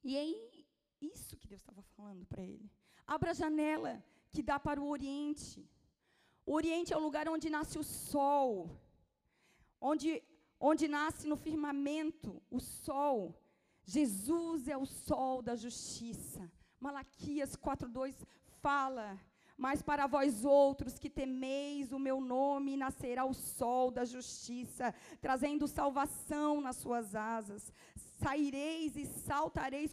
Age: 20-39